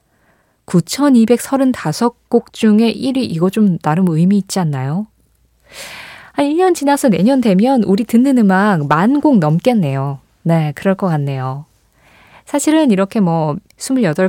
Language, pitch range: Korean, 170-235 Hz